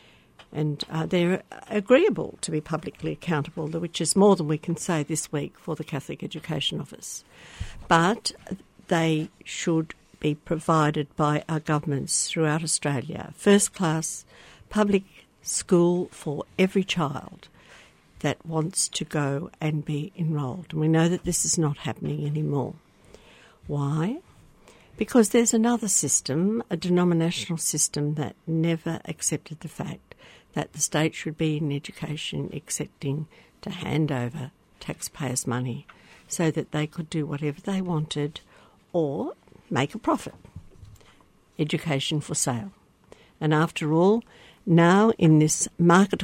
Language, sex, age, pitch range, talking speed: English, female, 60-79, 150-175 Hz, 130 wpm